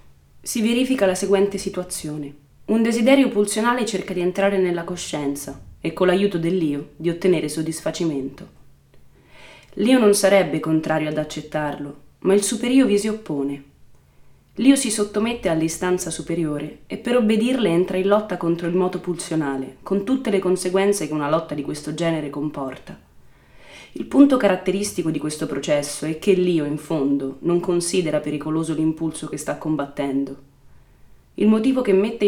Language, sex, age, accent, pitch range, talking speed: Italian, female, 20-39, native, 150-195 Hz, 150 wpm